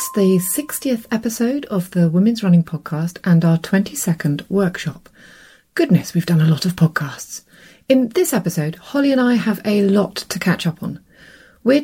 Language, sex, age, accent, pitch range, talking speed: English, female, 30-49, British, 165-215 Hz, 165 wpm